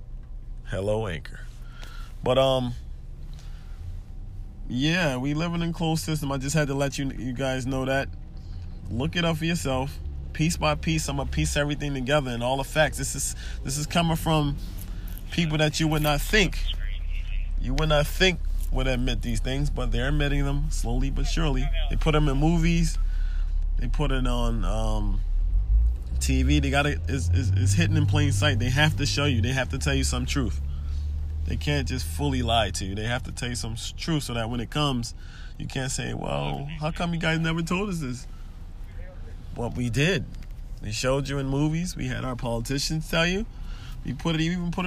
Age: 20-39